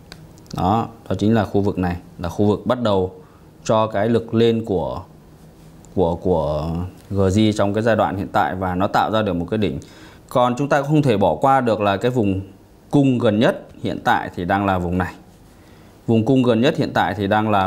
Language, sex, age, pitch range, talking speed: Vietnamese, male, 20-39, 95-120 Hz, 215 wpm